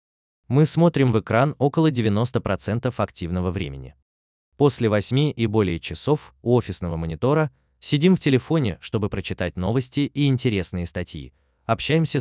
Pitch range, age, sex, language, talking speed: 90-135 Hz, 20-39, male, Russian, 130 wpm